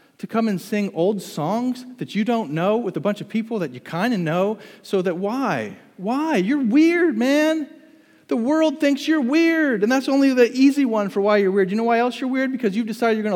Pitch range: 140-215 Hz